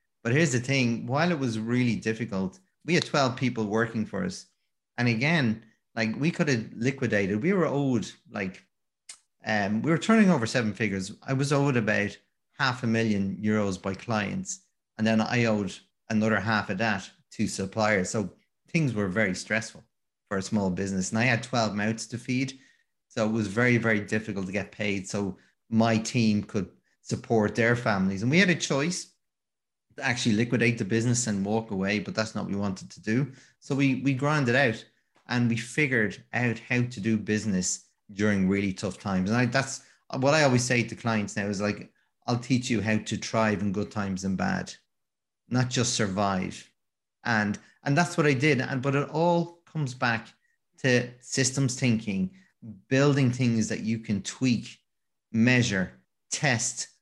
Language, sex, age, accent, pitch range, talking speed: English, male, 30-49, Irish, 105-130 Hz, 180 wpm